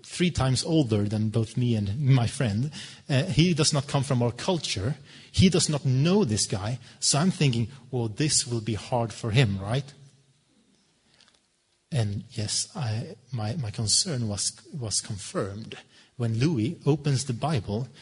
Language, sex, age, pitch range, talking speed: Danish, male, 30-49, 120-155 Hz, 160 wpm